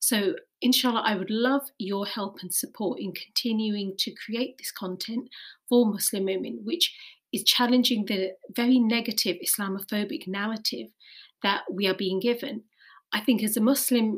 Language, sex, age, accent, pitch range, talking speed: English, female, 30-49, British, 195-245 Hz, 150 wpm